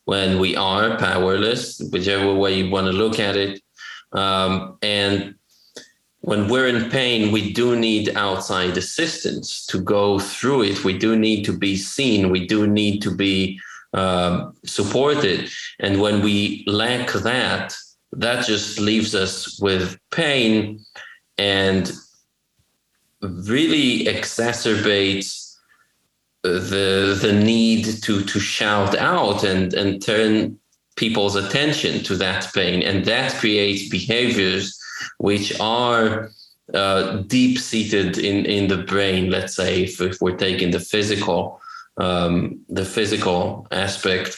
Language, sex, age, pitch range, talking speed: English, male, 30-49, 95-110 Hz, 125 wpm